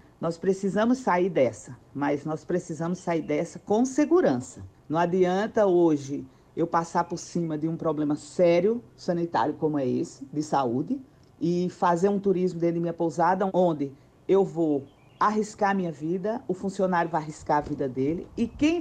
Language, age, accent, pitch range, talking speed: Portuguese, 50-69, Brazilian, 150-210 Hz, 165 wpm